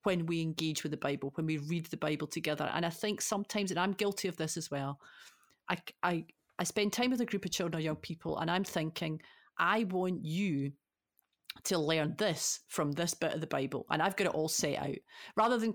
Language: English